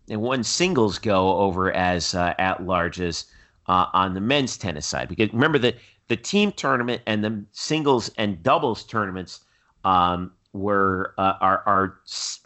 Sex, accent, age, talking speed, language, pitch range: male, American, 40-59, 155 wpm, English, 95-125 Hz